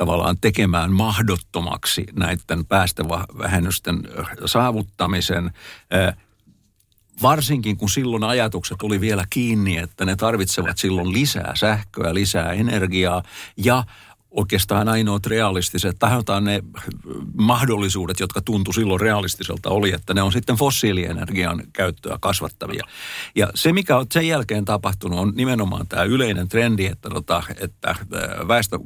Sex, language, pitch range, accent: male, Finnish, 95-120 Hz, native